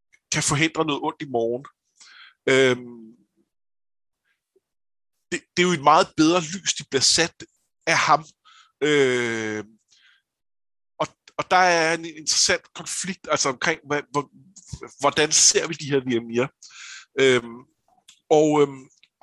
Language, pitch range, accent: Danish, 135-170 Hz, native